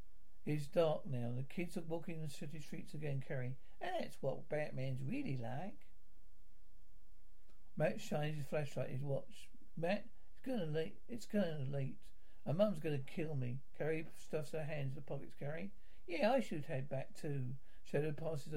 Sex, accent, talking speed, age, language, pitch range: male, British, 170 wpm, 60-79, English, 135-175 Hz